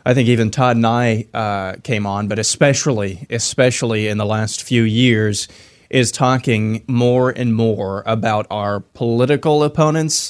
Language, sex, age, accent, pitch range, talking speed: English, male, 20-39, American, 110-125 Hz, 150 wpm